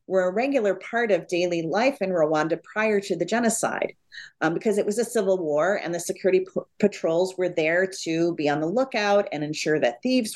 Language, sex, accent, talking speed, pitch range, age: English, female, American, 205 wpm, 160-205 Hz, 40-59